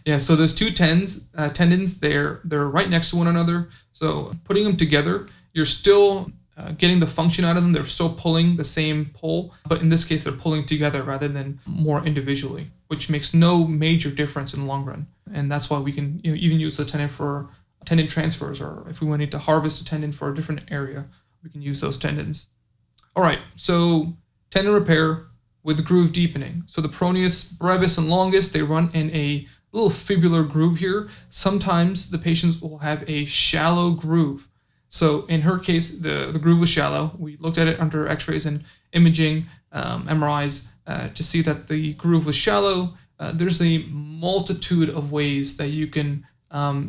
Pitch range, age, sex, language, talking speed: 150-170 Hz, 30-49, male, English, 195 wpm